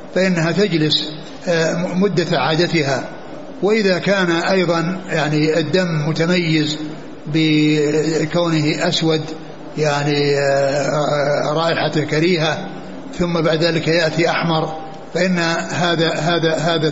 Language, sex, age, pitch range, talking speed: Arabic, male, 60-79, 160-180 Hz, 85 wpm